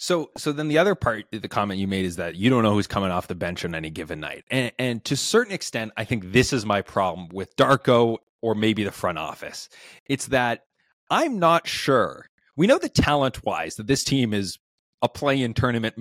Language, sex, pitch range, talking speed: English, male, 105-150 Hz, 225 wpm